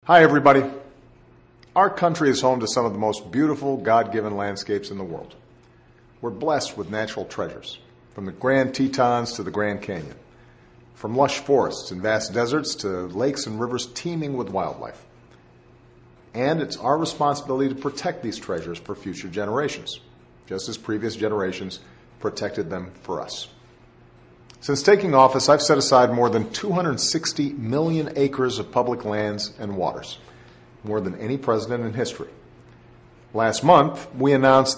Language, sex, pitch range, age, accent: Chinese, male, 110-140 Hz, 50-69, American